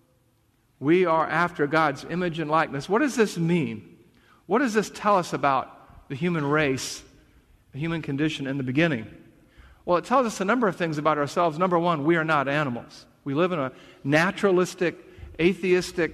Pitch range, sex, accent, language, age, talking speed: 140-185 Hz, male, American, English, 50-69, 180 wpm